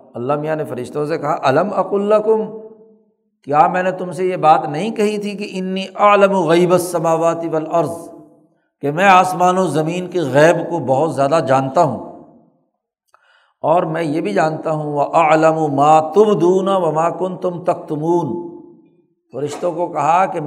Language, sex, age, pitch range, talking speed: Urdu, male, 60-79, 165-200 Hz, 160 wpm